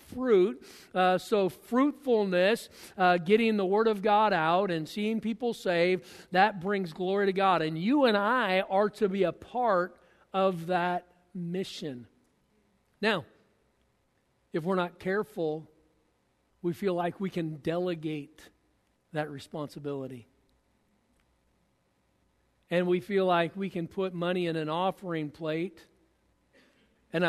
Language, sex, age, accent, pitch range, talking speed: English, male, 50-69, American, 170-215 Hz, 130 wpm